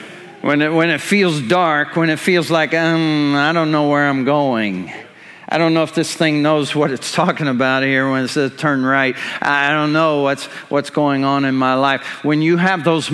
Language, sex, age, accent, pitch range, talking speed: English, male, 50-69, American, 150-205 Hz, 220 wpm